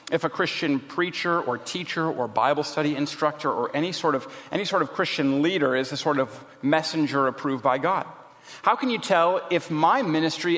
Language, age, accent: English, 40-59, American